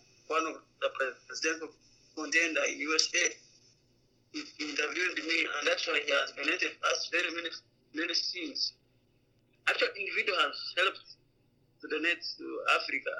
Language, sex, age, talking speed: English, male, 30-49, 125 wpm